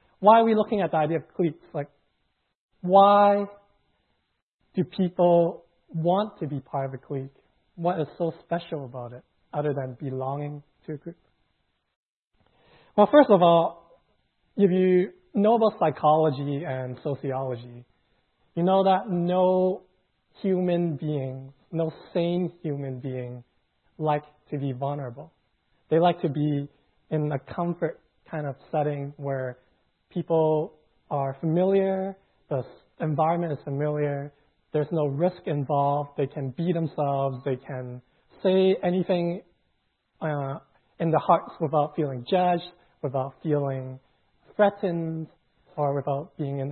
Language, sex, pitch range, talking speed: English, male, 135-175 Hz, 130 wpm